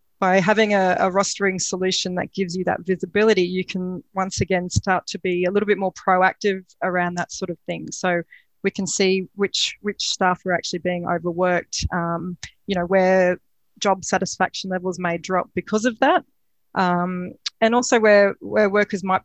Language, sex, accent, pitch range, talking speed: English, female, Australian, 180-195 Hz, 180 wpm